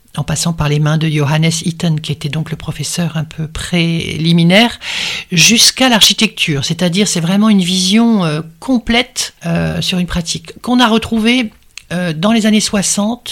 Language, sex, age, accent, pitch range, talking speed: French, male, 60-79, French, 165-210 Hz, 165 wpm